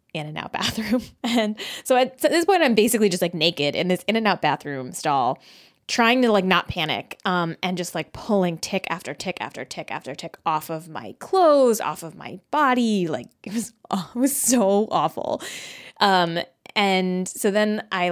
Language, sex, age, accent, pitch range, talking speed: English, female, 20-39, American, 160-215 Hz, 195 wpm